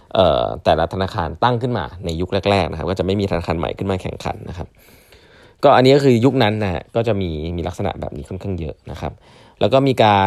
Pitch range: 90-120 Hz